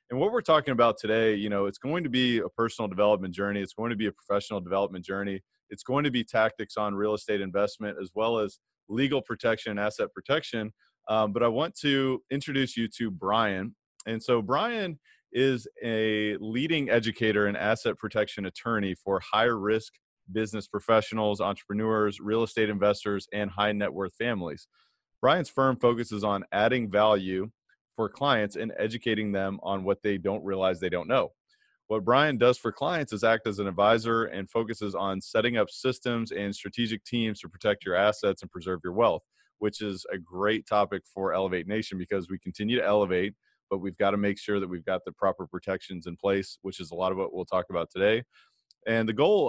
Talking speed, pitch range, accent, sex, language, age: 195 wpm, 100-115 Hz, American, male, English, 30-49